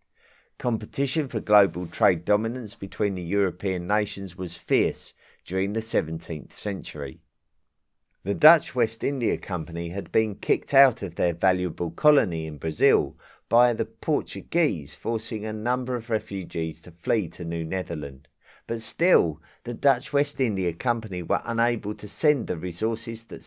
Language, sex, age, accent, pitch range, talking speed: English, male, 50-69, British, 85-115 Hz, 145 wpm